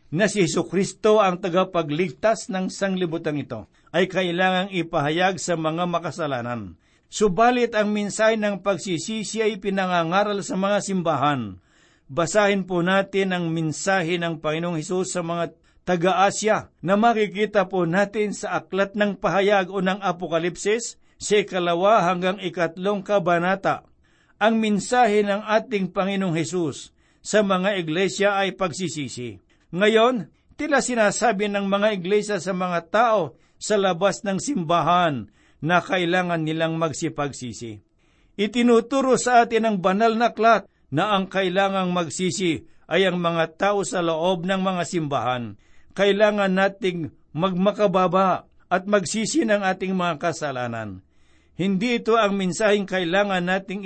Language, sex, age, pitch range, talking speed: Filipino, male, 60-79, 170-205 Hz, 125 wpm